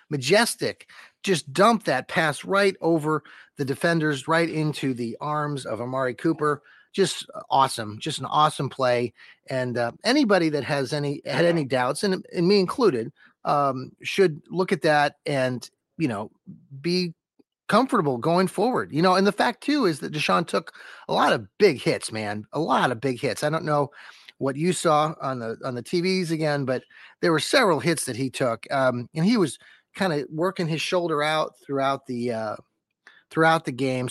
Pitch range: 130-170 Hz